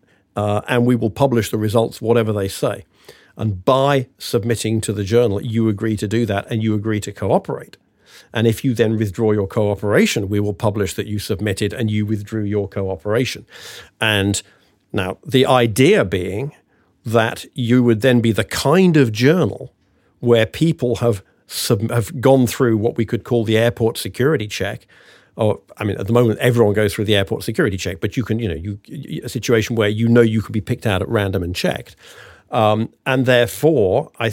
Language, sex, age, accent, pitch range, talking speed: English, male, 50-69, British, 105-125 Hz, 190 wpm